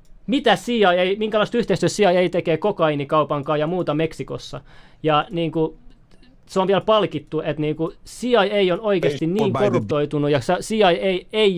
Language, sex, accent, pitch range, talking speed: Finnish, male, native, 155-200 Hz, 150 wpm